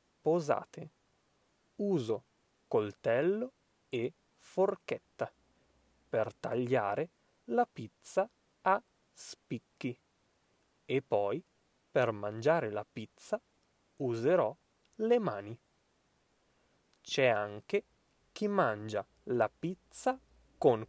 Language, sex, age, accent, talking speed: Italian, male, 30-49, native, 80 wpm